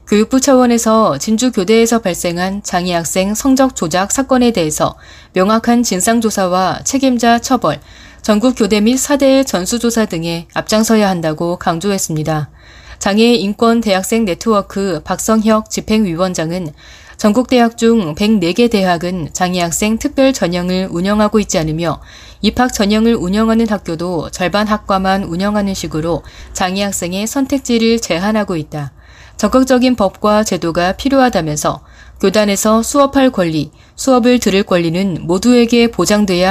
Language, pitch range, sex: Korean, 180-235 Hz, female